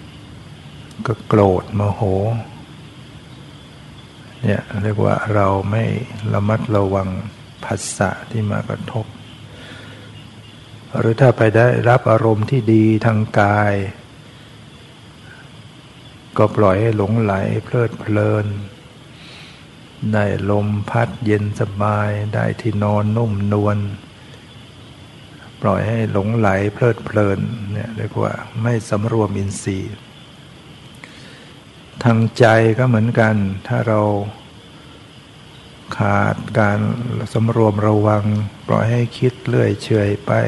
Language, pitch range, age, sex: Thai, 105-120 Hz, 60-79, male